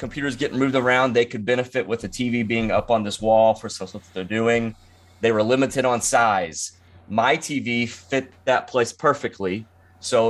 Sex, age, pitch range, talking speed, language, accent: male, 30-49, 95-115 Hz, 180 wpm, English, American